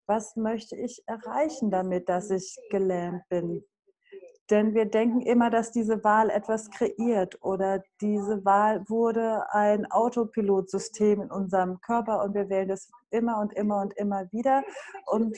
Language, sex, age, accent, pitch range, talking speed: English, female, 30-49, German, 200-250 Hz, 150 wpm